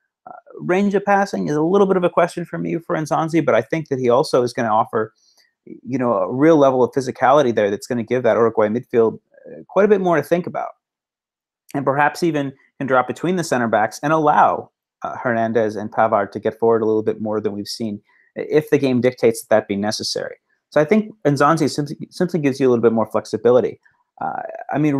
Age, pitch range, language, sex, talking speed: 30-49, 115-165 Hz, English, male, 230 wpm